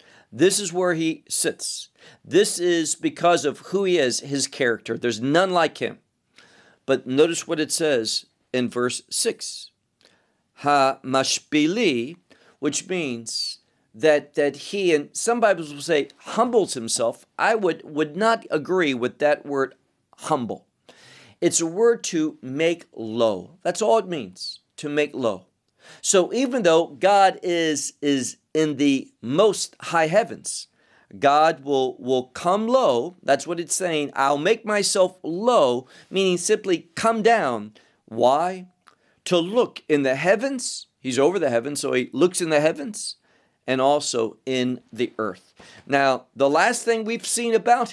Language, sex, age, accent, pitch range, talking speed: English, male, 50-69, American, 135-185 Hz, 150 wpm